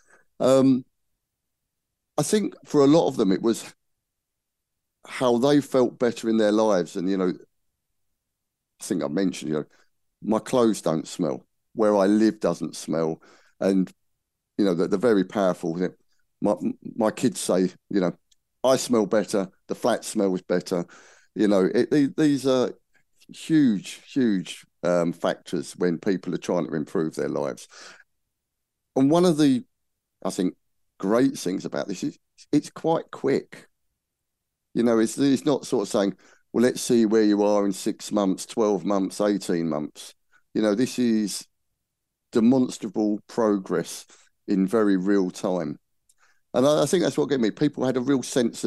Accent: British